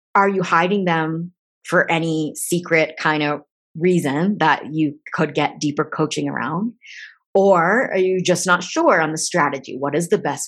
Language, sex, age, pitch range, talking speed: English, female, 30-49, 160-195 Hz, 170 wpm